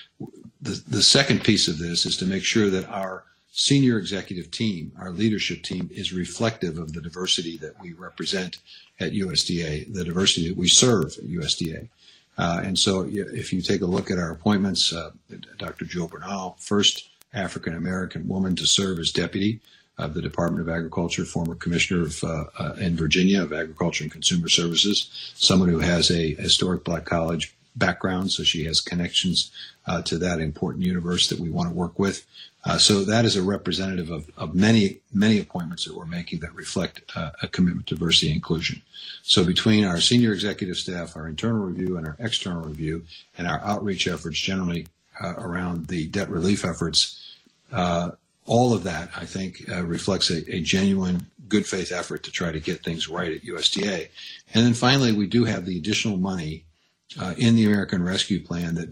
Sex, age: male, 60-79